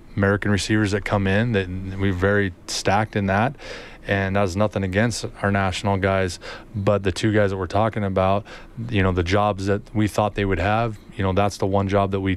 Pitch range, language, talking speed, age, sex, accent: 95-105 Hz, English, 220 wpm, 20-39, male, American